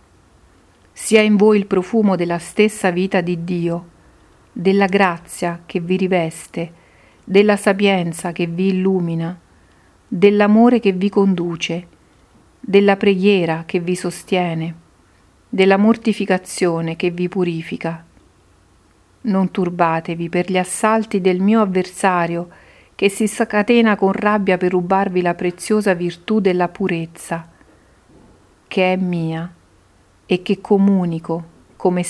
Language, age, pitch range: Italian, 40-59, 170-195 Hz